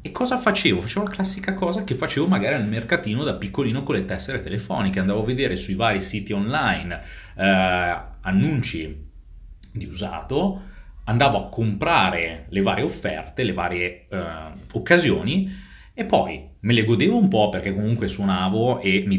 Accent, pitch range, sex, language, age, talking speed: native, 85-115 Hz, male, Italian, 30-49, 160 wpm